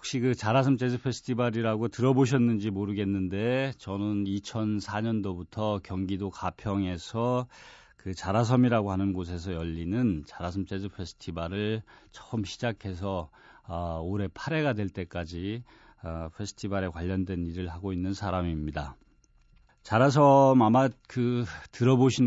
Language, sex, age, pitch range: Korean, male, 40-59, 95-120 Hz